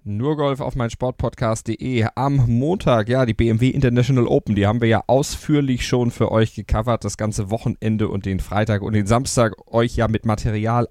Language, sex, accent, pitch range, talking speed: German, male, German, 105-125 Hz, 180 wpm